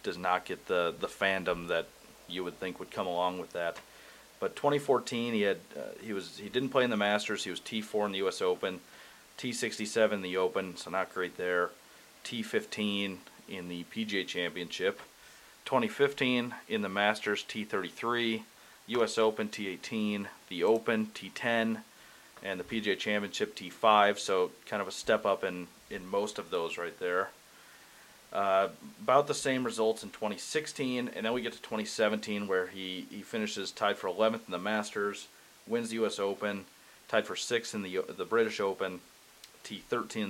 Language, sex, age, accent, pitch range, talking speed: English, male, 30-49, American, 100-120 Hz, 170 wpm